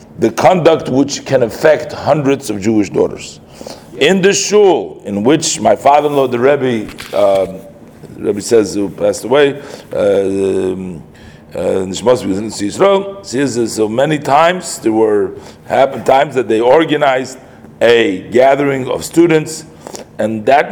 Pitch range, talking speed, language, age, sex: 110-155 Hz, 125 wpm, English, 40-59, male